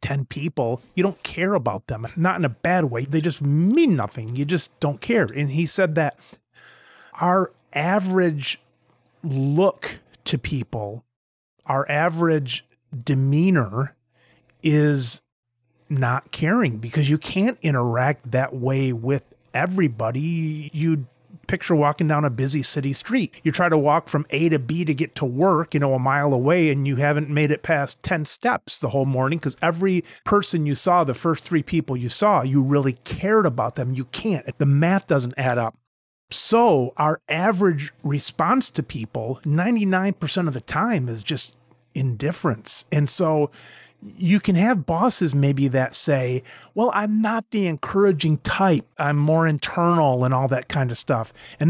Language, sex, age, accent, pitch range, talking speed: English, male, 30-49, American, 135-190 Hz, 165 wpm